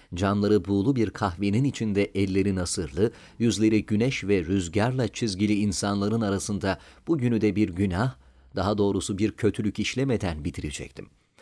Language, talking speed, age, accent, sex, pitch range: Turkish, 130 wpm, 40-59, native, male, 100-125 Hz